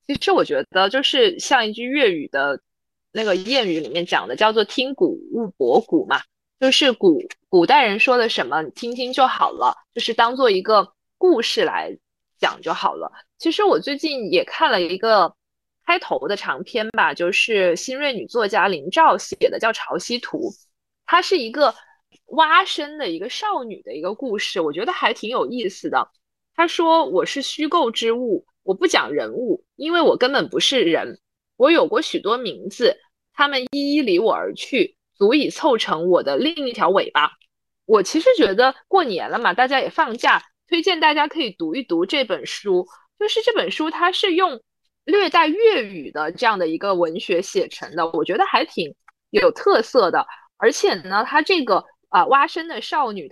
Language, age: Chinese, 20-39